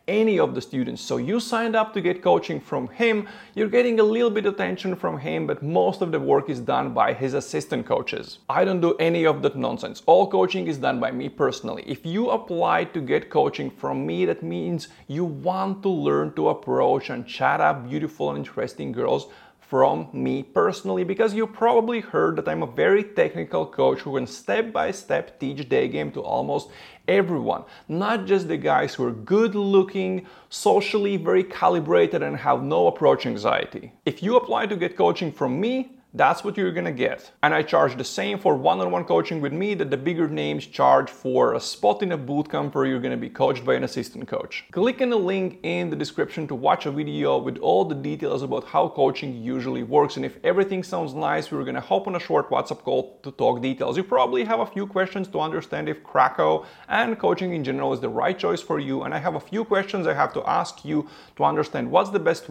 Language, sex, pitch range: English, male, 145-215 Hz